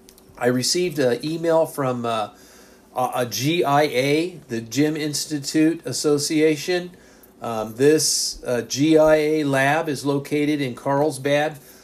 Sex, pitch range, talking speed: male, 125-170 Hz, 110 wpm